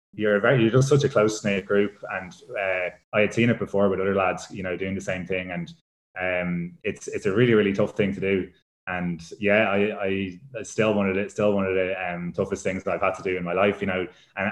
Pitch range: 95-105 Hz